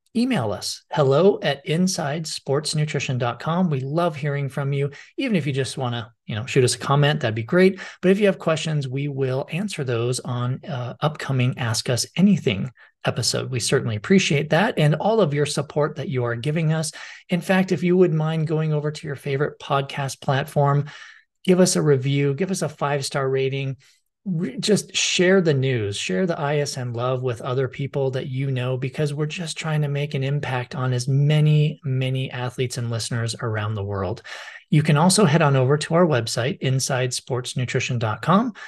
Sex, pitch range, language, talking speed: male, 125-160 Hz, English, 185 wpm